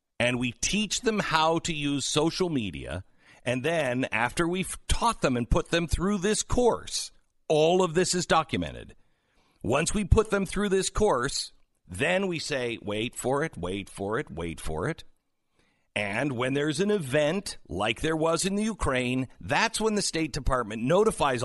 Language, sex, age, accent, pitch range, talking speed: English, male, 50-69, American, 110-175 Hz, 175 wpm